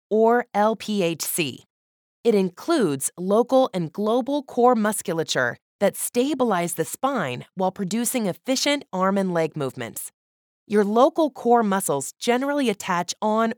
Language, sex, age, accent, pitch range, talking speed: English, female, 20-39, American, 175-250 Hz, 120 wpm